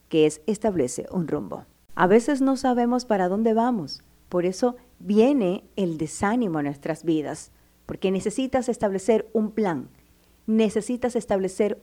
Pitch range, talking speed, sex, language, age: 185-235 Hz, 135 wpm, female, Spanish, 40-59